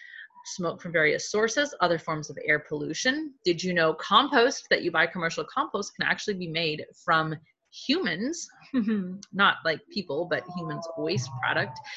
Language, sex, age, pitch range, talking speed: English, female, 30-49, 160-230 Hz, 155 wpm